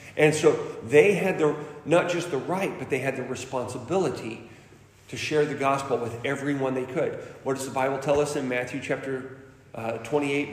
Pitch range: 130-165 Hz